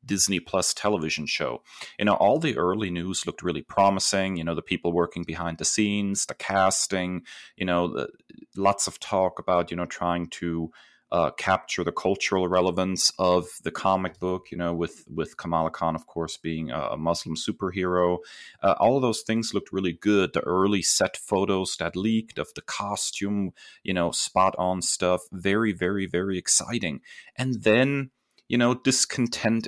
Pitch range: 85-100 Hz